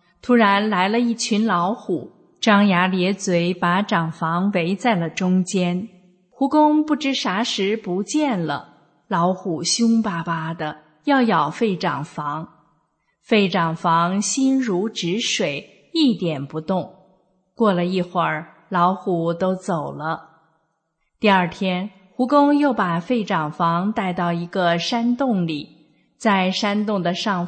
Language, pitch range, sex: Chinese, 170-220 Hz, female